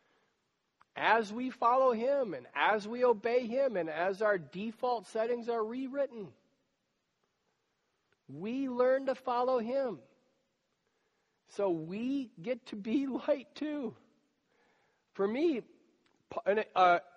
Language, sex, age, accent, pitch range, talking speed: English, male, 50-69, American, 180-245 Hz, 110 wpm